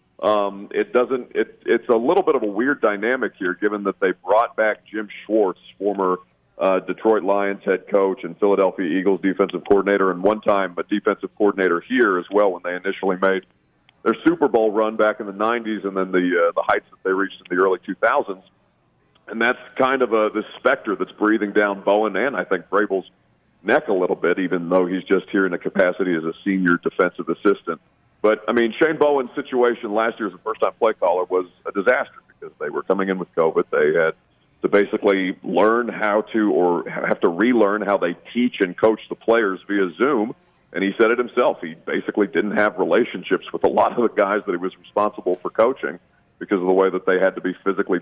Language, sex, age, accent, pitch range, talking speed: English, male, 40-59, American, 95-110 Hz, 215 wpm